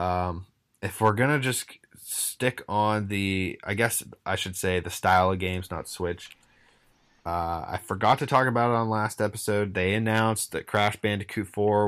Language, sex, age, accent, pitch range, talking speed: English, male, 20-39, American, 95-110 Hz, 175 wpm